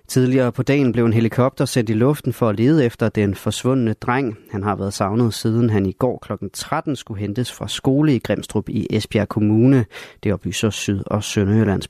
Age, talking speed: 30-49, 200 wpm